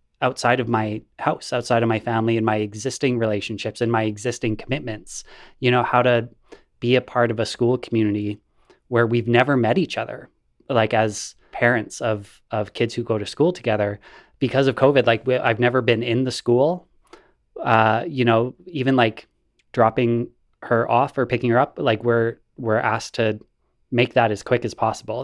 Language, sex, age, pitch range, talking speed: English, male, 20-39, 110-125 Hz, 185 wpm